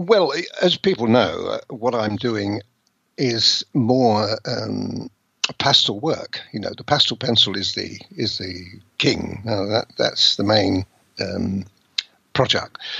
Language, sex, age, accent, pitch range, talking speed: English, male, 60-79, British, 105-130 Hz, 135 wpm